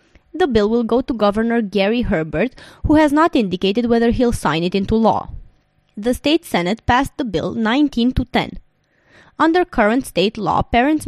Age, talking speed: 20-39, 170 wpm